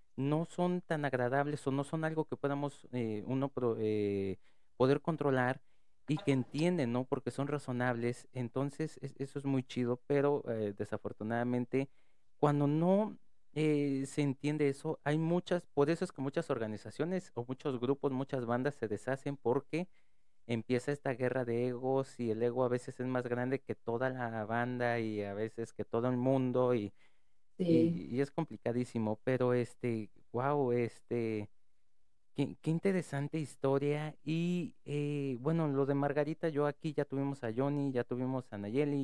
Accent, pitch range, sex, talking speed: Mexican, 120-145 Hz, male, 160 wpm